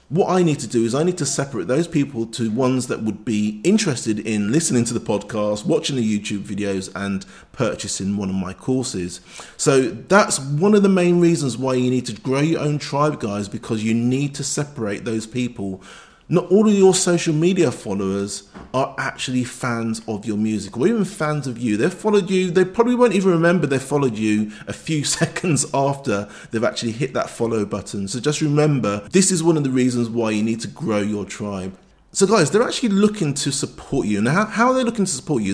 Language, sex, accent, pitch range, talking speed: English, male, British, 110-170 Hz, 215 wpm